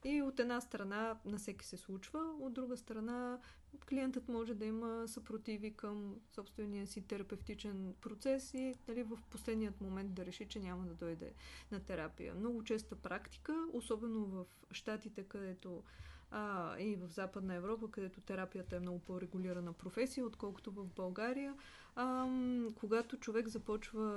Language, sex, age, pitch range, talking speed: Bulgarian, female, 20-39, 195-235 Hz, 145 wpm